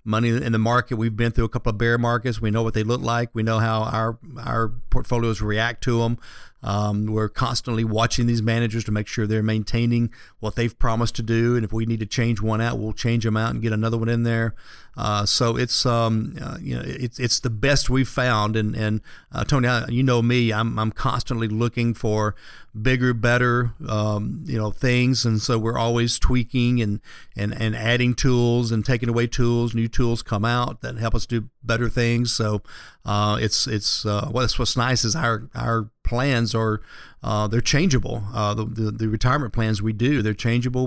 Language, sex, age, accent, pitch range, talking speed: English, male, 50-69, American, 110-125 Hz, 210 wpm